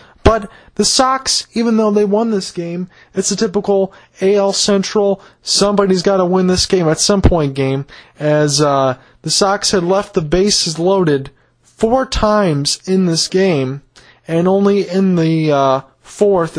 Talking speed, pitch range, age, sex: 160 wpm, 155-195 Hz, 20-39, male